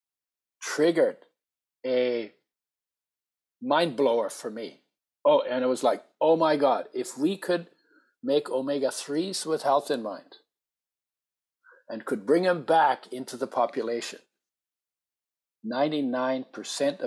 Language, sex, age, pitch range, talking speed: English, male, 50-69, 125-165 Hz, 115 wpm